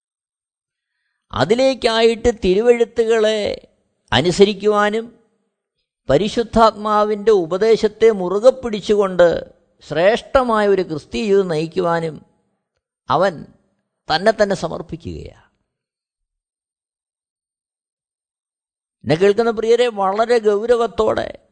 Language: Malayalam